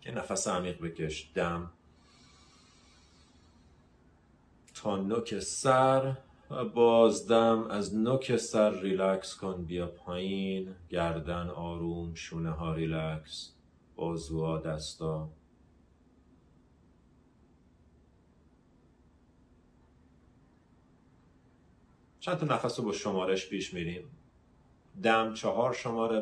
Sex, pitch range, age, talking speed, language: male, 80-95 Hz, 40-59, 80 wpm, Persian